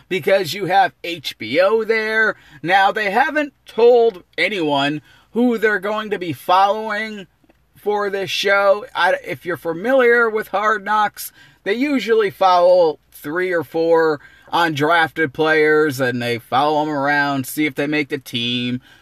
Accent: American